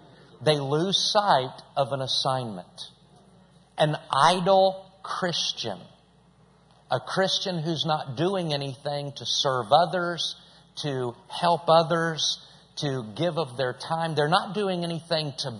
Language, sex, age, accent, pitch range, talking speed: English, male, 50-69, American, 145-180 Hz, 120 wpm